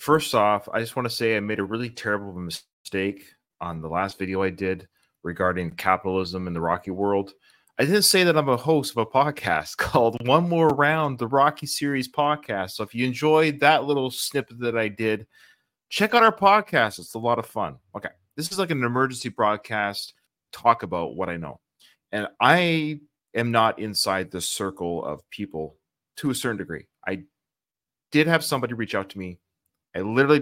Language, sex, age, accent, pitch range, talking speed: English, male, 30-49, American, 100-140 Hz, 190 wpm